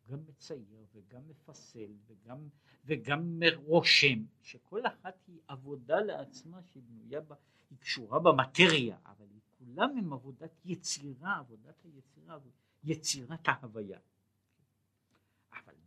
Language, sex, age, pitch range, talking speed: Hebrew, male, 60-79, 110-155 Hz, 100 wpm